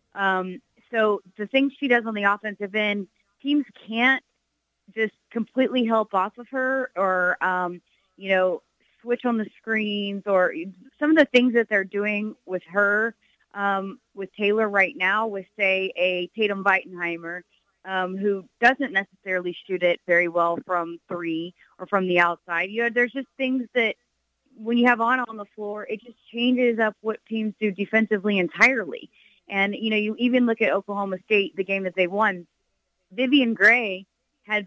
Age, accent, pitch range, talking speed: 30-49, American, 195-235 Hz, 170 wpm